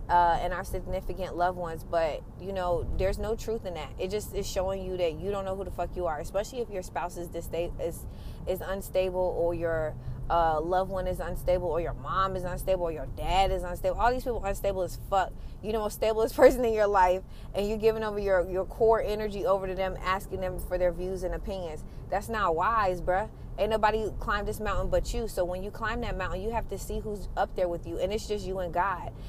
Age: 20-39